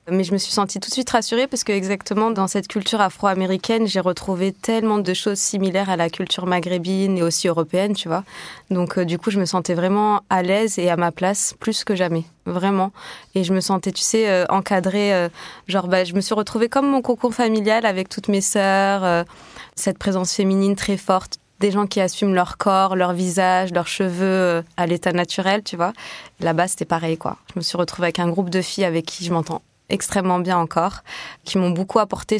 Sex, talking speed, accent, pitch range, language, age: female, 220 wpm, French, 175-200 Hz, French, 20-39